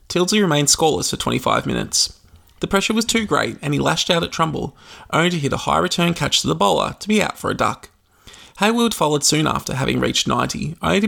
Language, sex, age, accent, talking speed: English, male, 20-39, Australian, 225 wpm